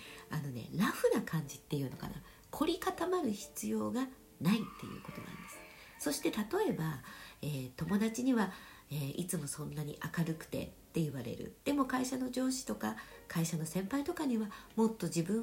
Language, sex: Japanese, female